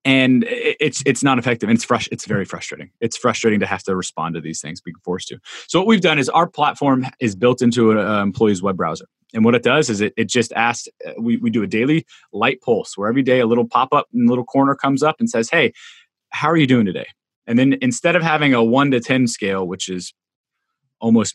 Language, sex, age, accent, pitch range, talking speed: English, male, 30-49, American, 105-160 Hz, 245 wpm